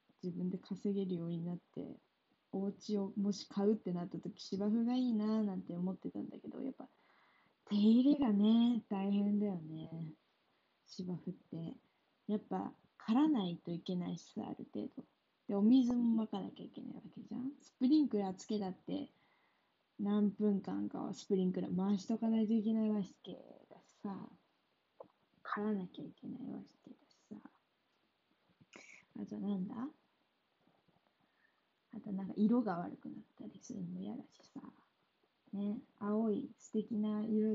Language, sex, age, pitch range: Japanese, female, 20-39, 190-225 Hz